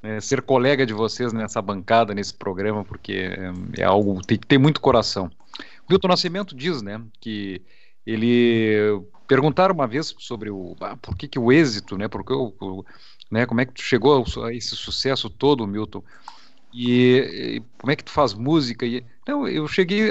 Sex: male